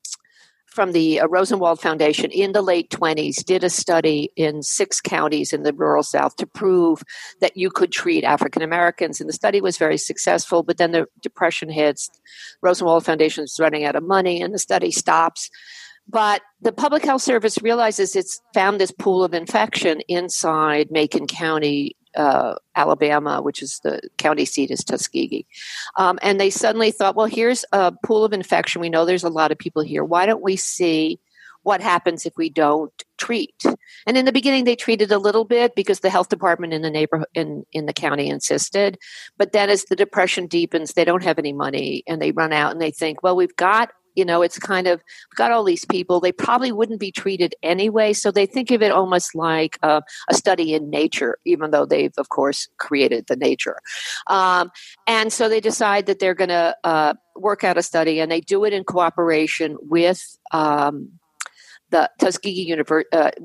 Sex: female